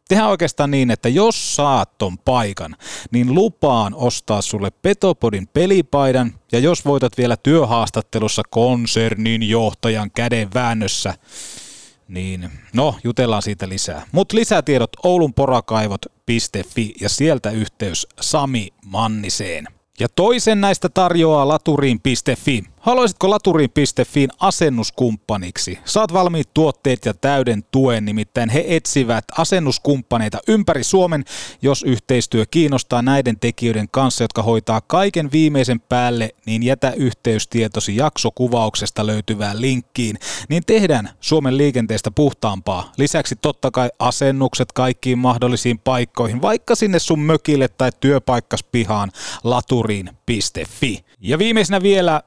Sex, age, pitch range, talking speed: male, 30-49, 110-150 Hz, 110 wpm